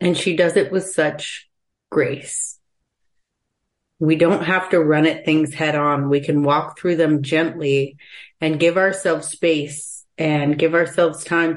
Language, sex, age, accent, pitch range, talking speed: English, female, 30-49, American, 160-185 Hz, 155 wpm